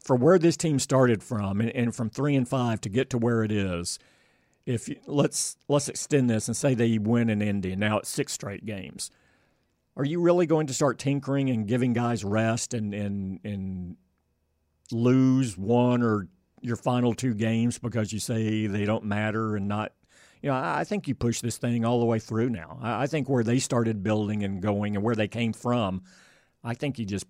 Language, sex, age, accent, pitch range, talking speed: English, male, 50-69, American, 105-125 Hz, 200 wpm